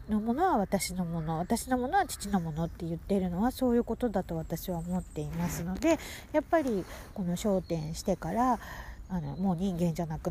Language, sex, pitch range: Japanese, female, 150-215 Hz